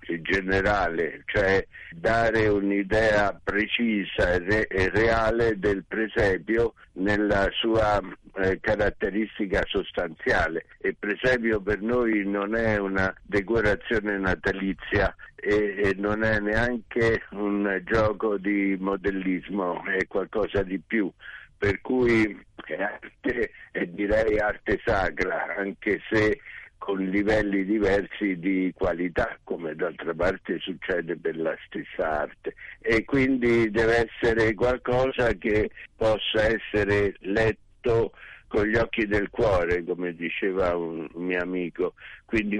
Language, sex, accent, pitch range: Italian, male, native, 95-110 Hz